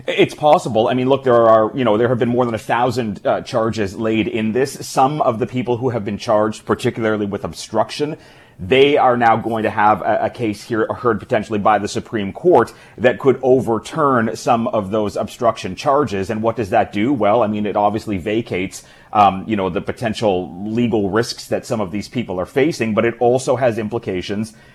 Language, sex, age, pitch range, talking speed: English, male, 30-49, 105-120 Hz, 210 wpm